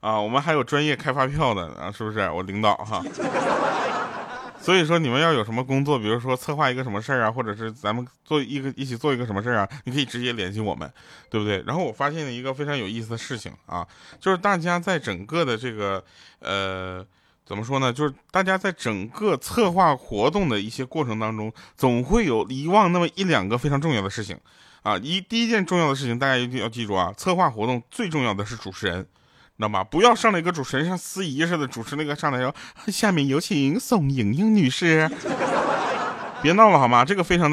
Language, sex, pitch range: Chinese, male, 110-170 Hz